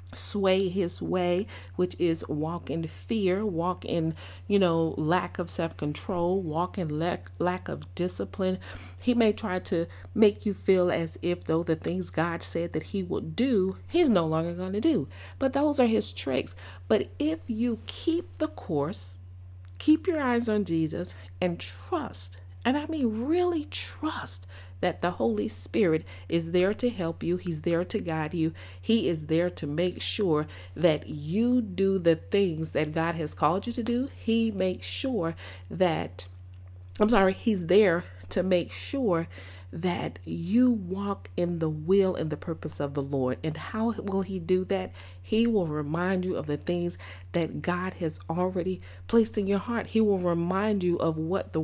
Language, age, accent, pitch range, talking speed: English, 40-59, American, 130-200 Hz, 175 wpm